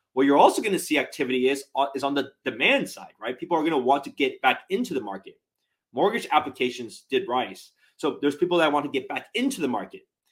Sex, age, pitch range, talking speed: male, 30-49, 125-175 Hz, 235 wpm